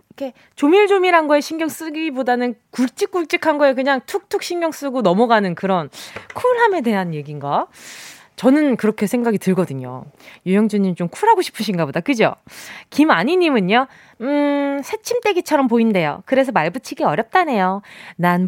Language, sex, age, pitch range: Korean, female, 20-39, 200-300 Hz